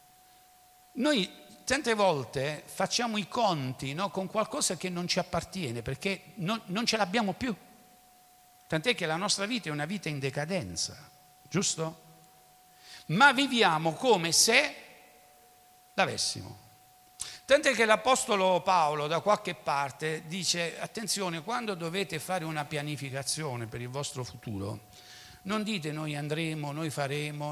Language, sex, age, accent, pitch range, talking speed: Italian, male, 60-79, native, 140-200 Hz, 130 wpm